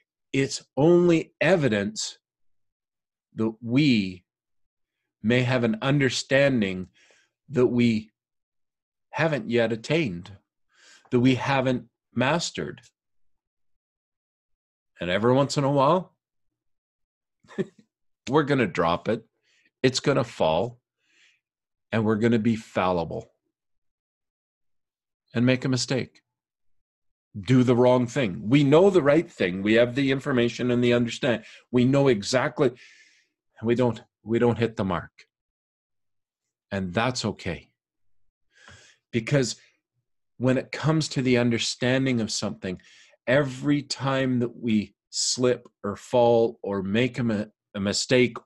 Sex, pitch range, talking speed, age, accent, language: male, 105-130 Hz, 115 wpm, 50-69, American, English